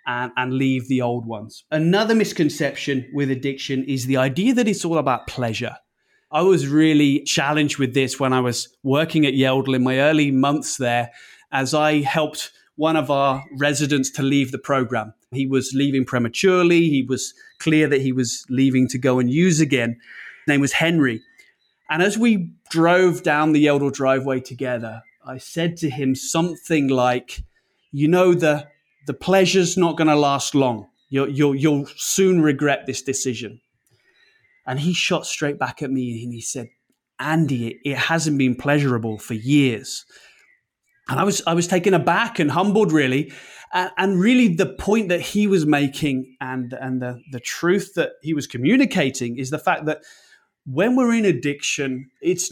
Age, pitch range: 20-39, 130-165 Hz